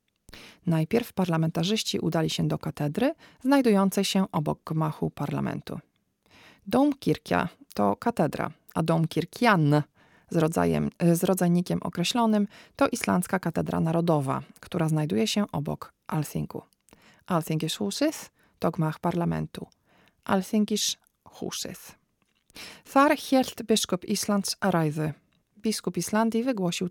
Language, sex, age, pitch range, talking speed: Polish, female, 40-59, 160-220 Hz, 95 wpm